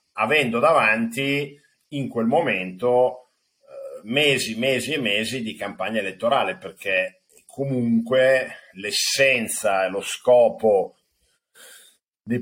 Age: 50-69